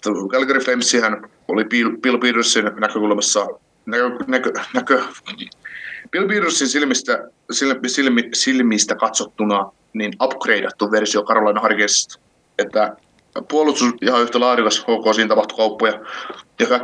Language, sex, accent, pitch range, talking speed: Finnish, male, native, 105-120 Hz, 105 wpm